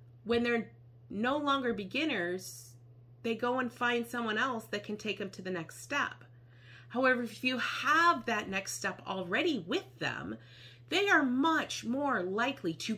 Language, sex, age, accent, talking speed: English, female, 30-49, American, 160 wpm